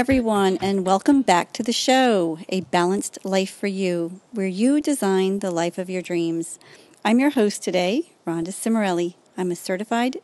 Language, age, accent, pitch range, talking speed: English, 40-59, American, 180-230 Hz, 175 wpm